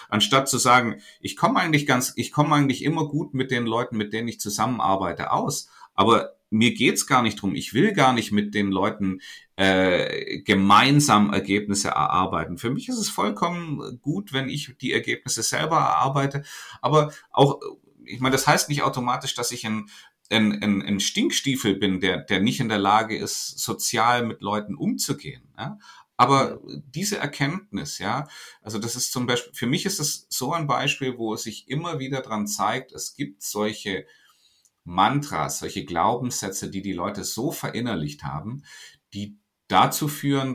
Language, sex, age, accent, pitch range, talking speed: German, male, 40-59, German, 100-140 Hz, 170 wpm